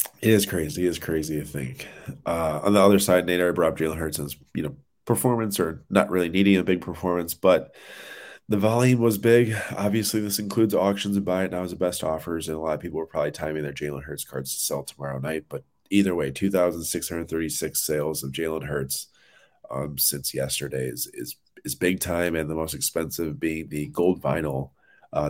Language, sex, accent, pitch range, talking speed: English, male, American, 70-90 Hz, 205 wpm